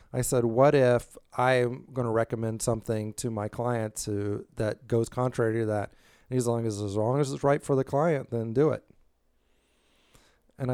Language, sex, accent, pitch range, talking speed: English, male, American, 105-125 Hz, 195 wpm